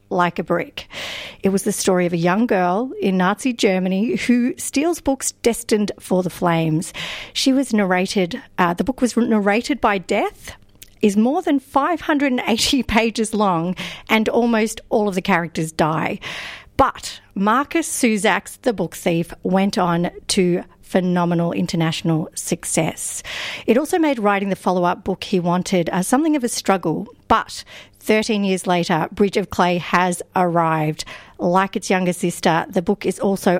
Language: English